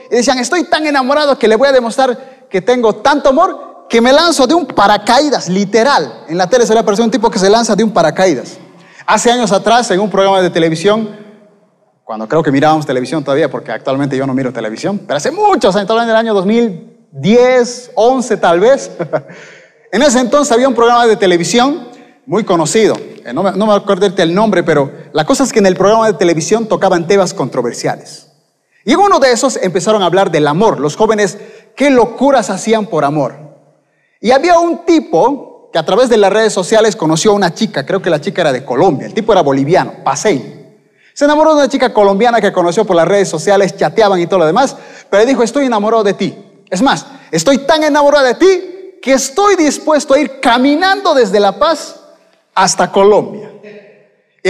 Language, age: Spanish, 30-49